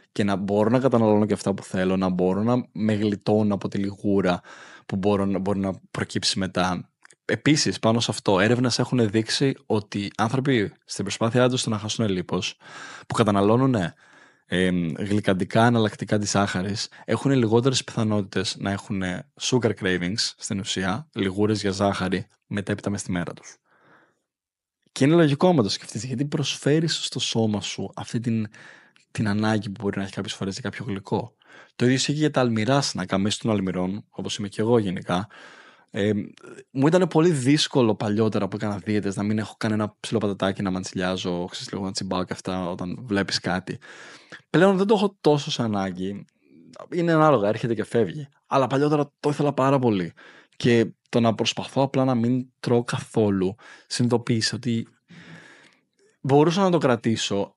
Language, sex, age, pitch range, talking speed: Greek, male, 20-39, 100-125 Hz, 170 wpm